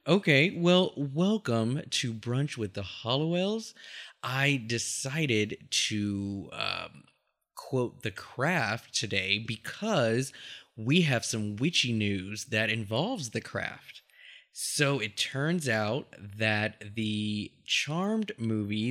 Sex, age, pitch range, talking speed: male, 20-39, 105-145 Hz, 110 wpm